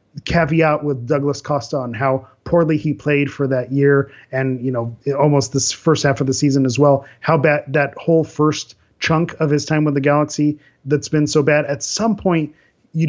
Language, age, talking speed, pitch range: English, 30-49, 200 wpm, 130-150 Hz